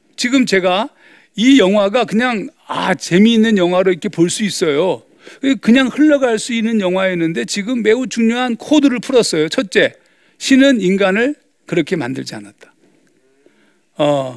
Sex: male